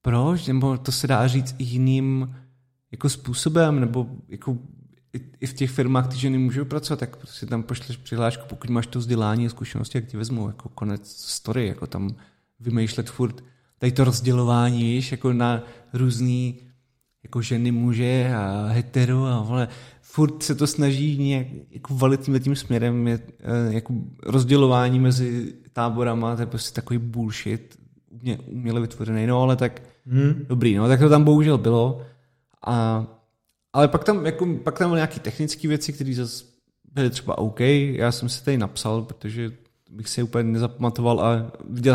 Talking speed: 165 wpm